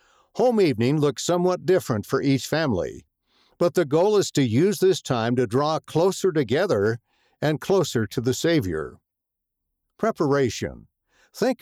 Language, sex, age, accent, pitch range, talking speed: English, male, 60-79, American, 130-170 Hz, 140 wpm